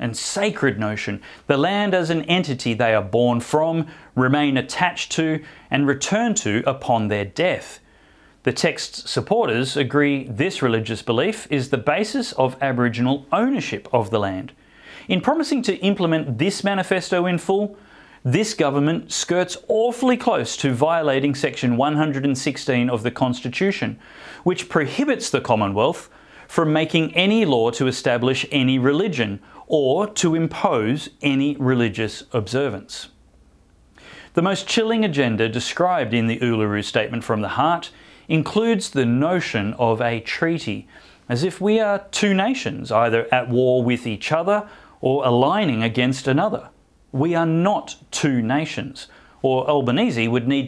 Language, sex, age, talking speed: English, male, 30-49, 140 wpm